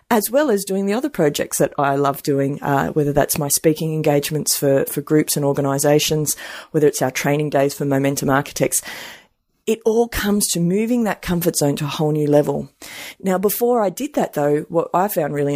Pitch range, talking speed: 150-190 Hz, 205 wpm